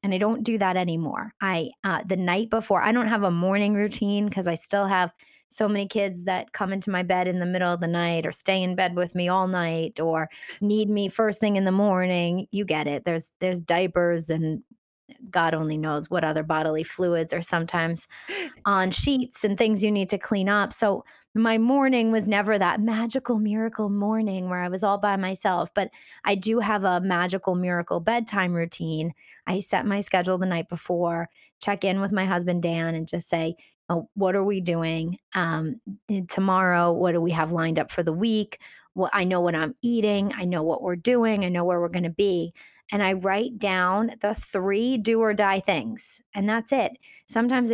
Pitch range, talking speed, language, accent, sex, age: 175-215 Hz, 205 wpm, English, American, female, 20-39